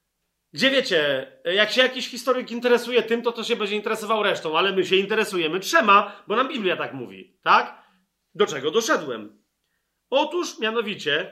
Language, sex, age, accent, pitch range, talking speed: Polish, male, 40-59, native, 180-260 Hz, 160 wpm